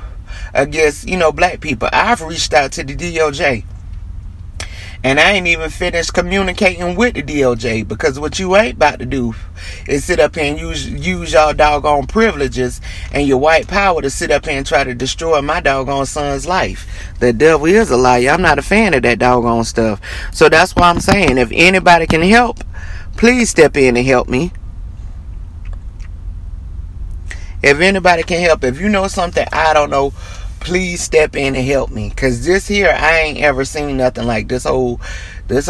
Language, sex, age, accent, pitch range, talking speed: English, male, 30-49, American, 105-150 Hz, 185 wpm